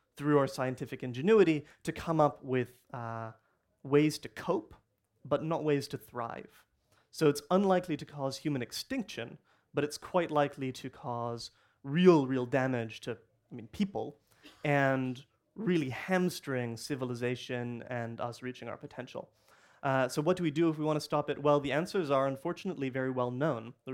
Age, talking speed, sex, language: 30-49, 165 wpm, male, English